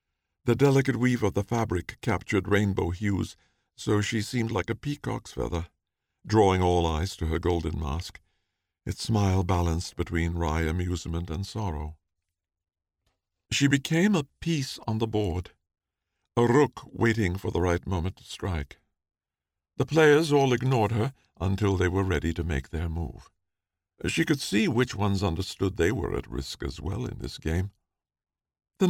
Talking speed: 160 wpm